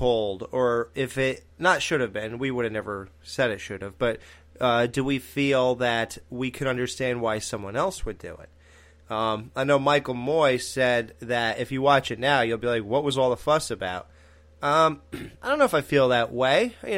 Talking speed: 215 wpm